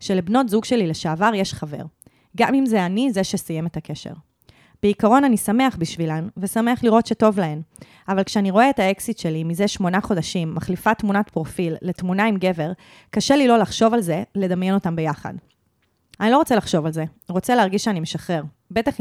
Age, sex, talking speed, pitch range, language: 20-39, female, 180 wpm, 170-225 Hz, Hebrew